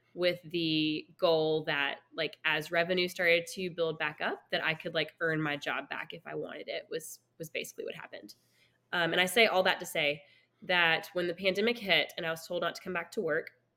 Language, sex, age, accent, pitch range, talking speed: English, female, 10-29, American, 160-190 Hz, 225 wpm